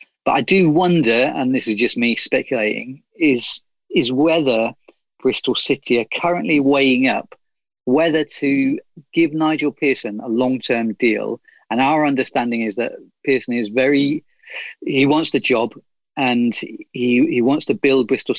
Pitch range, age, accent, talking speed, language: 115-140 Hz, 40-59, British, 150 wpm, English